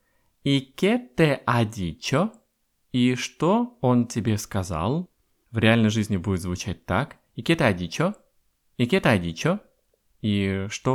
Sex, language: male, Russian